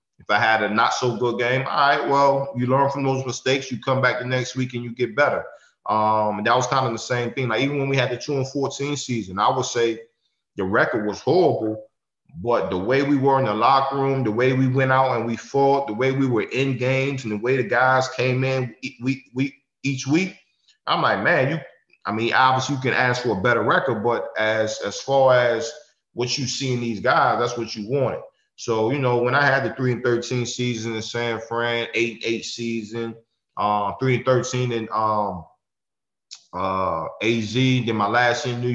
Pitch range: 115-130 Hz